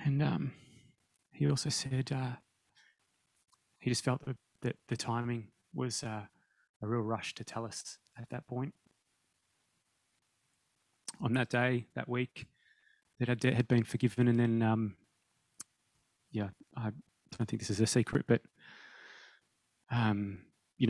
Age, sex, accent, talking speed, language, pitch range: 20-39, male, Australian, 140 wpm, English, 115-135 Hz